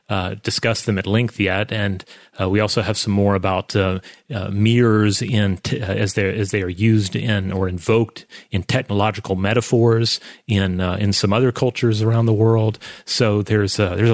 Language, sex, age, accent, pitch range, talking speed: English, male, 30-49, American, 100-125 Hz, 190 wpm